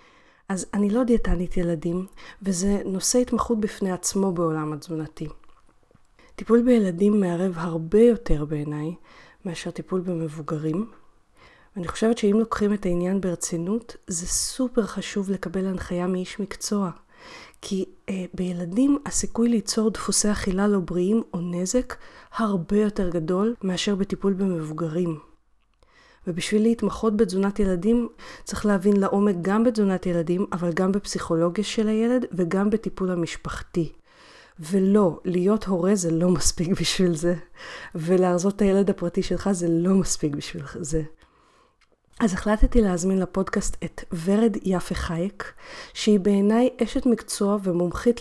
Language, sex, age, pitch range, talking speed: Hebrew, female, 30-49, 175-210 Hz, 125 wpm